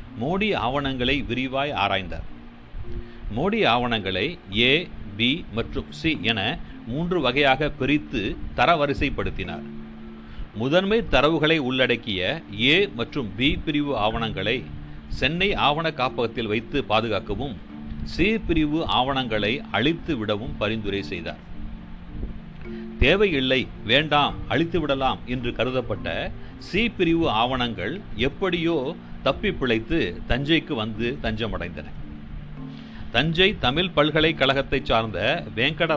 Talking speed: 95 wpm